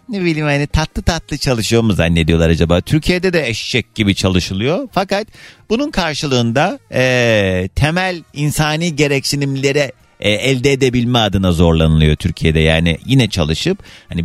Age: 40-59